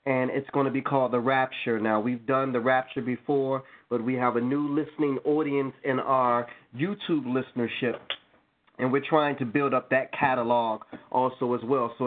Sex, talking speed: male, 185 wpm